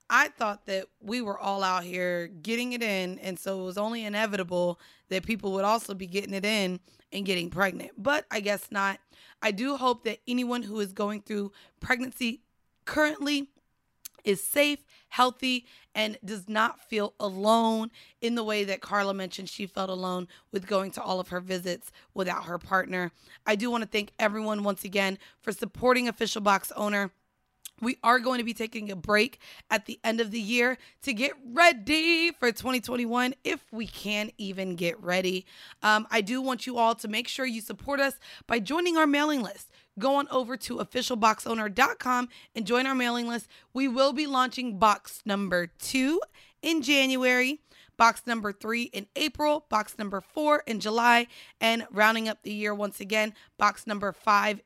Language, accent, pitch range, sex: English, American, 200-250 Hz, female